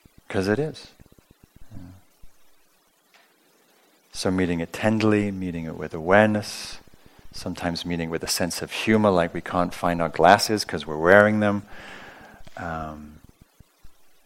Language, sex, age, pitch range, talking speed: English, male, 40-59, 85-105 Hz, 120 wpm